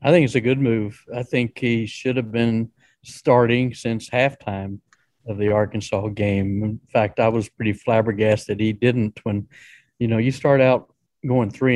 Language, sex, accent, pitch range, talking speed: English, male, American, 105-130 Hz, 185 wpm